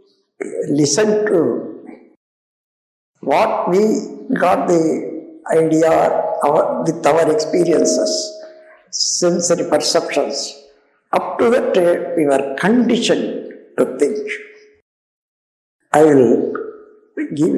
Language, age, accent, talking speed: Tamil, 60-79, native, 80 wpm